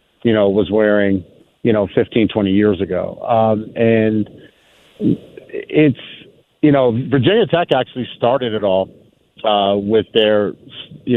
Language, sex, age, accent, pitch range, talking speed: English, male, 40-59, American, 100-120 Hz, 135 wpm